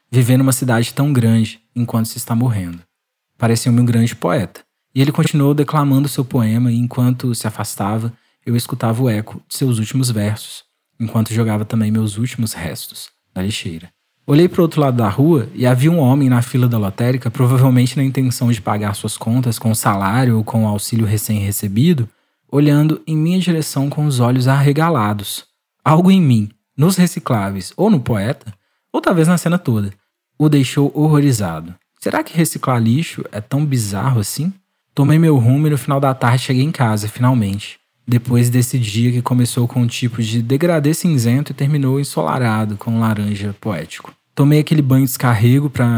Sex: male